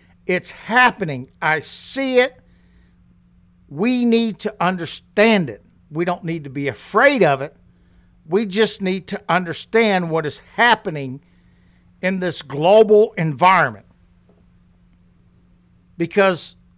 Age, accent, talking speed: 60-79, American, 110 wpm